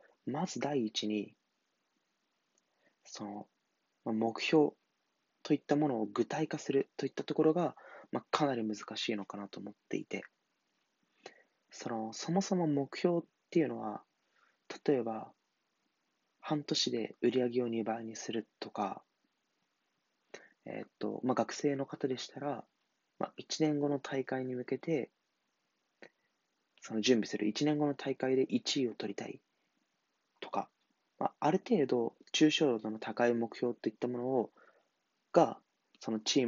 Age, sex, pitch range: 20-39, male, 110-150 Hz